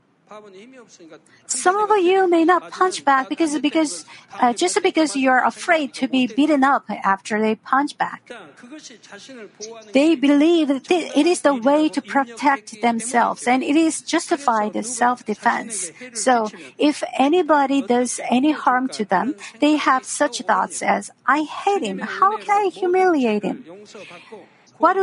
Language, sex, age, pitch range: Korean, female, 50-69, 235-320 Hz